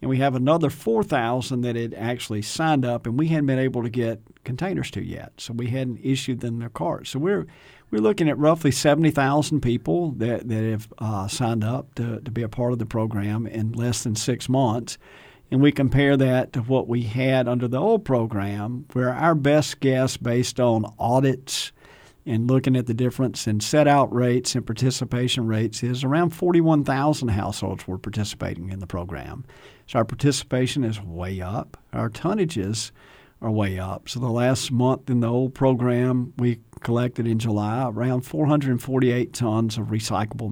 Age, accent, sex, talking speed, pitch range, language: 50-69, American, male, 180 wpm, 110-135 Hz, English